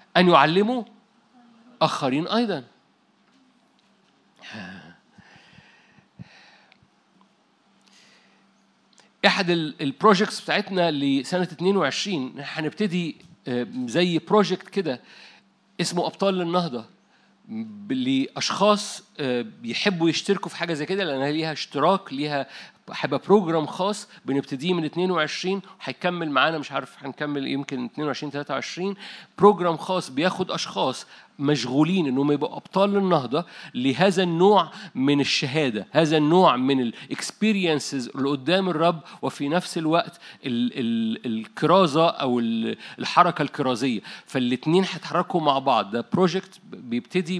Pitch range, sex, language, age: 145-200 Hz, male, Arabic, 50-69